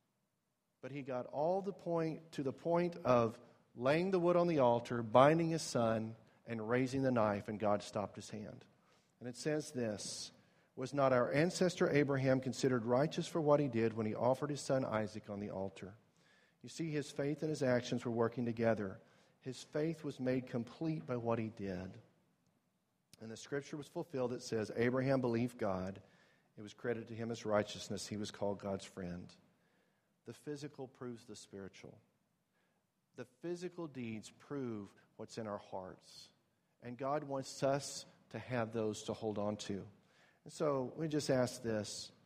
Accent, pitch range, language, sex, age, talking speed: American, 110-145 Hz, English, male, 40-59, 175 wpm